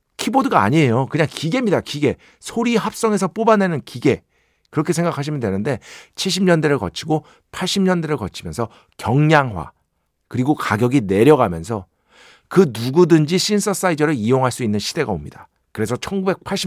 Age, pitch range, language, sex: 50-69, 115-170 Hz, Korean, male